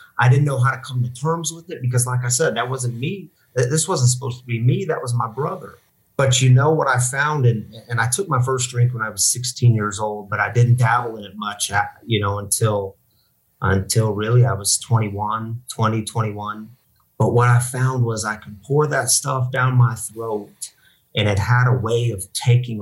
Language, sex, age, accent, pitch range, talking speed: English, male, 30-49, American, 105-125 Hz, 215 wpm